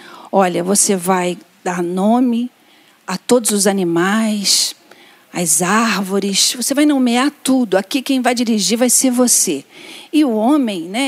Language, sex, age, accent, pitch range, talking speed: Portuguese, female, 40-59, Brazilian, 200-280 Hz, 140 wpm